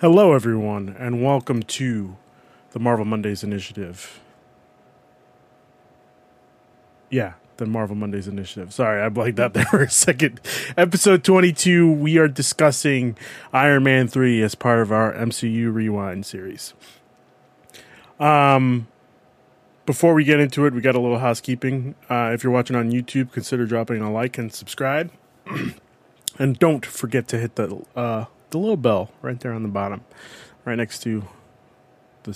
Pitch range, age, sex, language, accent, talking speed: 110-135 Hz, 30-49, male, English, American, 145 wpm